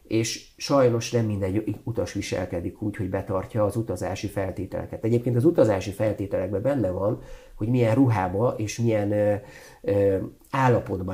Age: 50-69